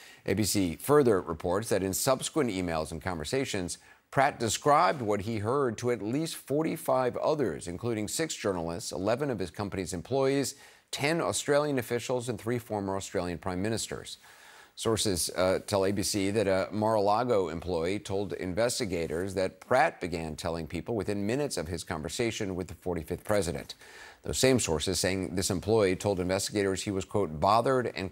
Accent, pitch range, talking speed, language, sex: American, 95-120 Hz, 160 wpm, English, male